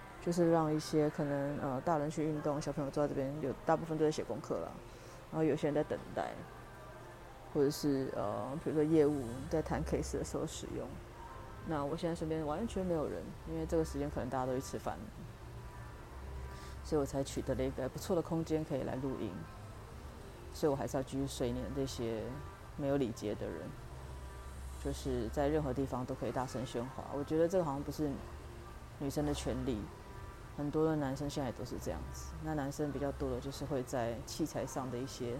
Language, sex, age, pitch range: Chinese, female, 30-49, 120-150 Hz